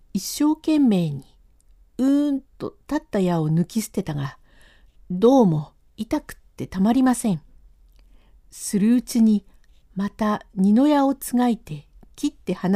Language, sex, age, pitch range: Japanese, female, 50-69, 145-240 Hz